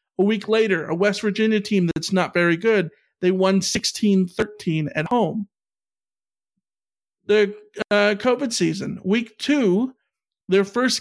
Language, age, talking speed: English, 50-69, 130 wpm